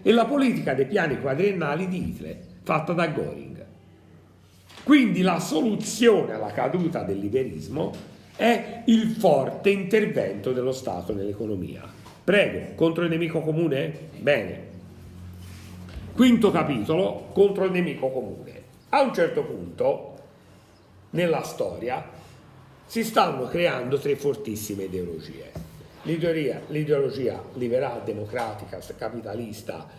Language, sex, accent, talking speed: Italian, male, native, 110 wpm